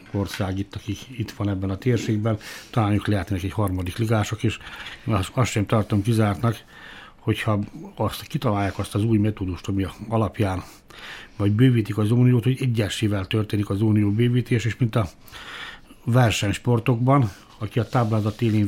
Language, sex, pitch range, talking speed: Hungarian, male, 100-120 Hz, 150 wpm